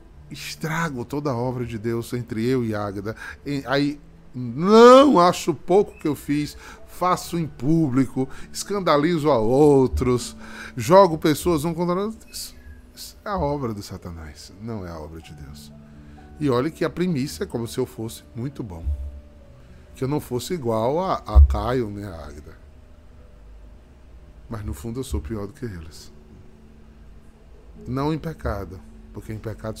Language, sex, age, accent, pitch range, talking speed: Portuguese, male, 10-29, Brazilian, 75-120 Hz, 165 wpm